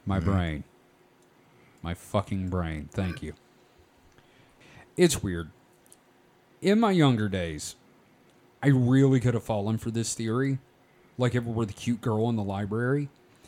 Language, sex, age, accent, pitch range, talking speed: English, male, 30-49, American, 105-130 Hz, 140 wpm